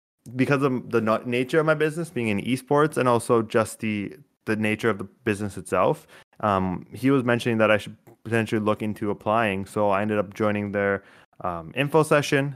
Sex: male